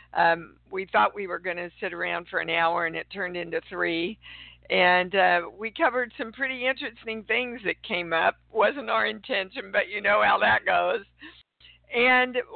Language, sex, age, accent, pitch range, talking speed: English, female, 50-69, American, 170-220 Hz, 180 wpm